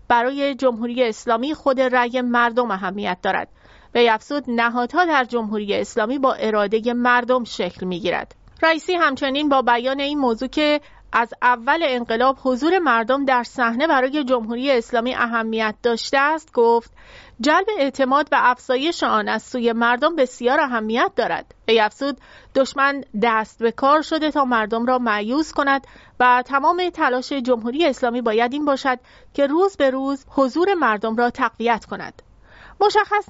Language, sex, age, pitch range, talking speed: English, female, 30-49, 230-280 Hz, 145 wpm